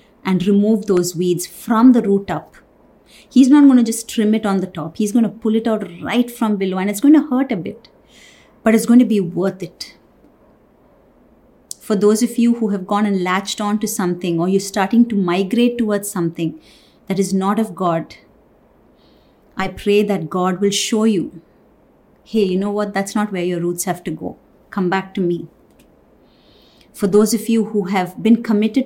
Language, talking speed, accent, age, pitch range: English, 200 wpm, Indian, 30-49, 185-225 Hz